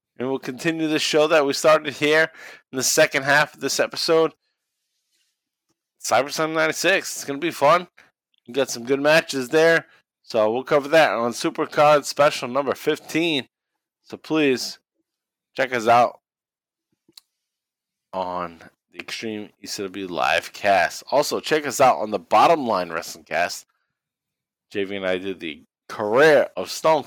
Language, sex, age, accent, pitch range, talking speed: English, male, 20-39, American, 105-150 Hz, 150 wpm